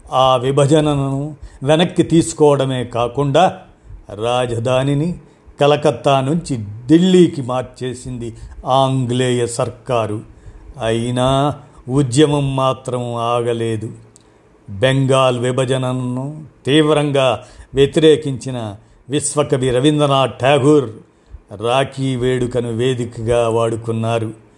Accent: native